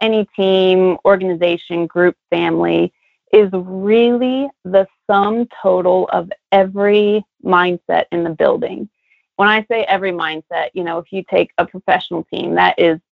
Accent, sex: American, female